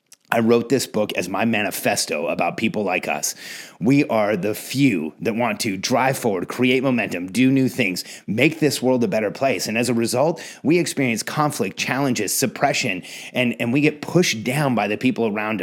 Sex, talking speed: male, 190 wpm